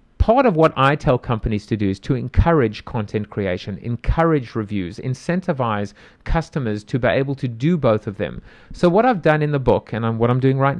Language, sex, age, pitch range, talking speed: English, male, 40-59, 115-155 Hz, 205 wpm